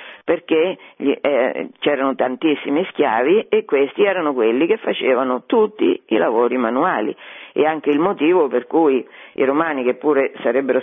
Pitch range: 130-175 Hz